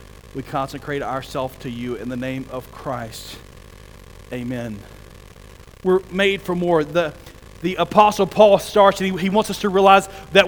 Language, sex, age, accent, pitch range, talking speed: English, male, 40-59, American, 210-280 Hz, 160 wpm